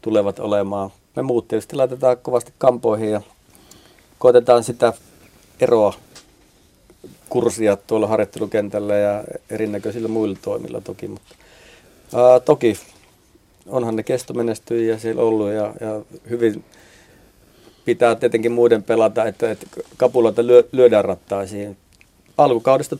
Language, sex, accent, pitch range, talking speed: Finnish, male, native, 100-120 Hz, 105 wpm